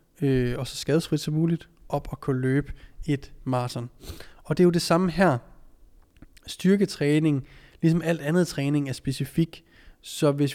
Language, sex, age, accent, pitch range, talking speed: Danish, male, 20-39, native, 130-160 Hz, 155 wpm